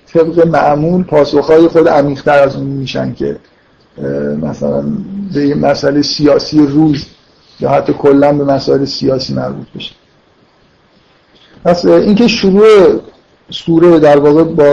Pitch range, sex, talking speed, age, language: 145-170 Hz, male, 120 wpm, 50-69, Persian